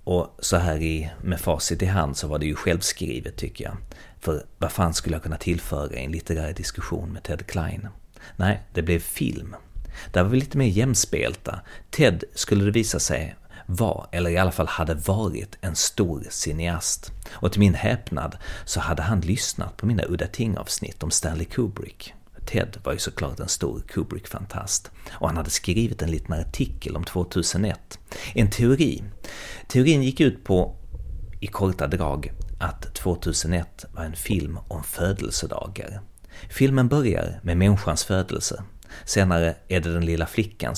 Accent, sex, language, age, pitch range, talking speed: native, male, Swedish, 30-49, 80-100 Hz, 165 wpm